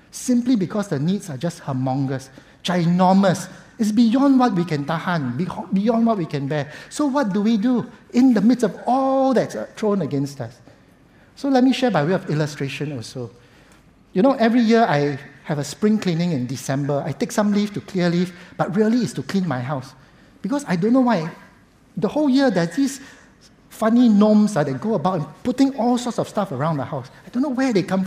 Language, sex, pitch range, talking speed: English, male, 145-225 Hz, 205 wpm